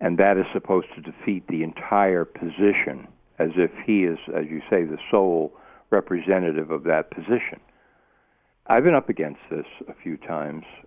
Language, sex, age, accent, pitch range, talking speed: English, male, 60-79, American, 80-110 Hz, 165 wpm